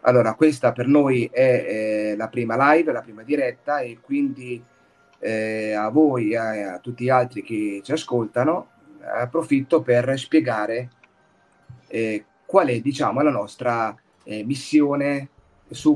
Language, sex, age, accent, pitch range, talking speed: Italian, male, 30-49, native, 110-145 Hz, 140 wpm